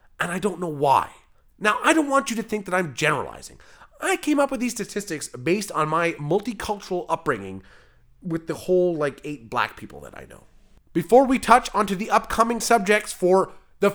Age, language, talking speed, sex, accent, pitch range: 30-49, English, 195 wpm, male, American, 150-220 Hz